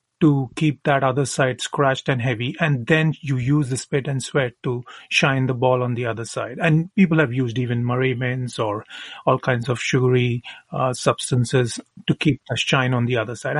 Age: 30-49